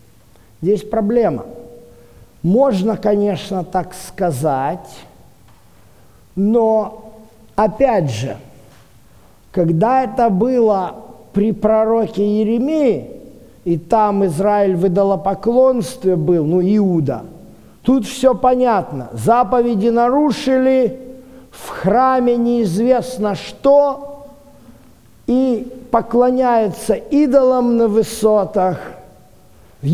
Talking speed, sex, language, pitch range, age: 75 wpm, male, Russian, 175-245 Hz, 50-69